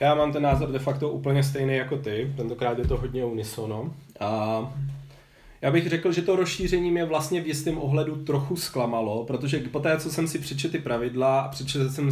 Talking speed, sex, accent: 205 wpm, male, native